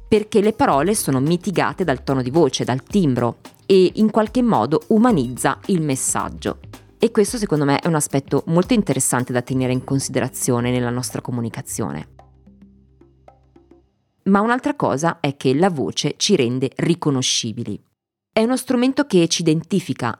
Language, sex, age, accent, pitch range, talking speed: Italian, female, 20-39, native, 130-180 Hz, 150 wpm